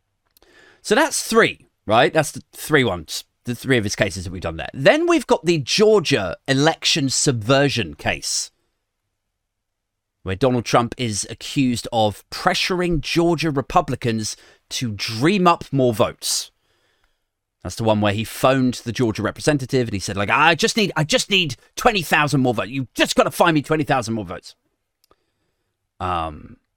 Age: 30-49